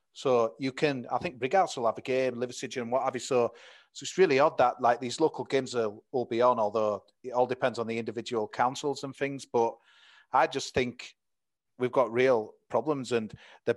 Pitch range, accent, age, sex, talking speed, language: 115-130 Hz, British, 40-59, male, 215 wpm, English